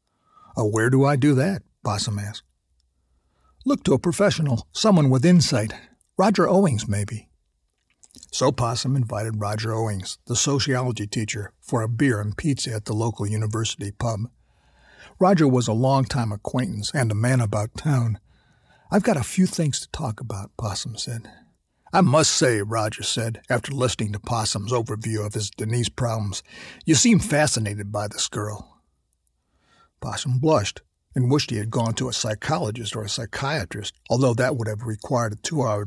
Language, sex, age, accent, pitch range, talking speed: English, male, 60-79, American, 105-130 Hz, 160 wpm